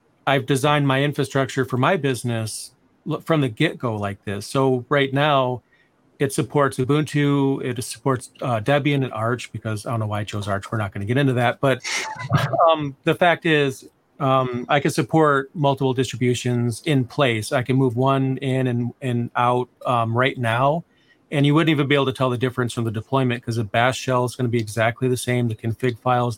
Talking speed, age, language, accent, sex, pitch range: 205 wpm, 40-59, English, American, male, 120-145 Hz